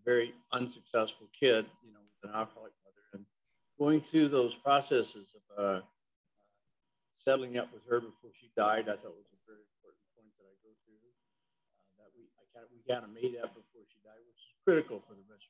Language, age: English, 50-69